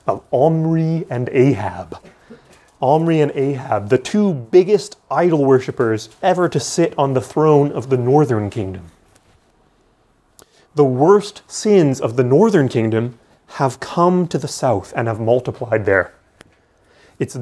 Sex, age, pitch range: male, 30-49, 115-155 Hz